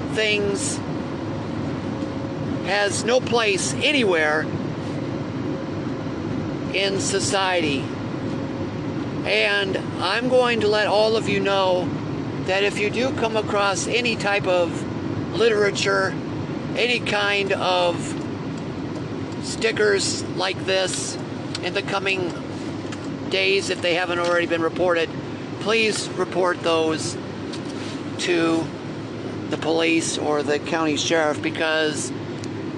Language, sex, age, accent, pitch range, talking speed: English, male, 50-69, American, 155-205 Hz, 95 wpm